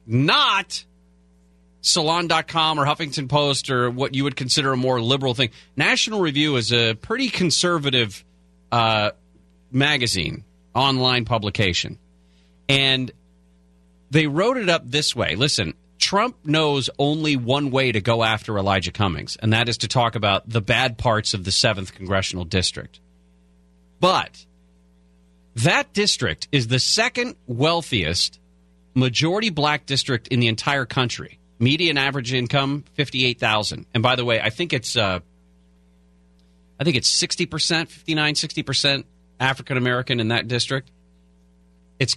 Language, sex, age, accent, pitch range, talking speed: English, male, 40-59, American, 90-140 Hz, 140 wpm